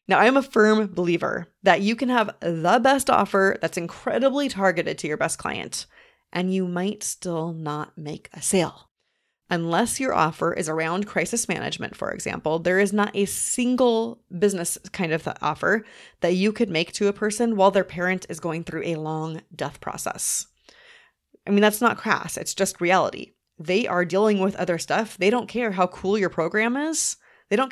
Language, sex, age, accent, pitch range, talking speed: English, female, 30-49, American, 175-235 Hz, 185 wpm